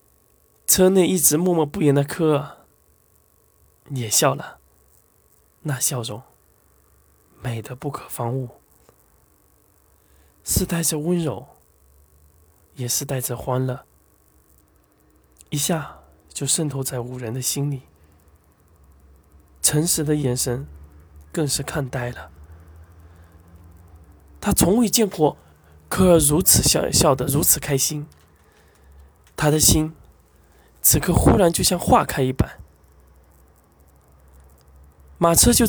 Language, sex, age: Chinese, male, 20-39